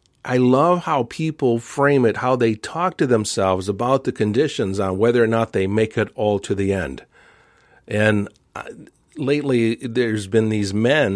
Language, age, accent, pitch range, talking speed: English, 50-69, American, 110-135 Hz, 165 wpm